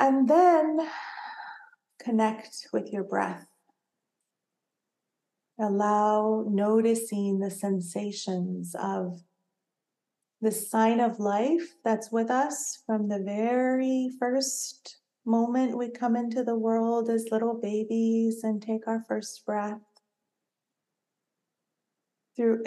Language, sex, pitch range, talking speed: English, female, 210-245 Hz, 100 wpm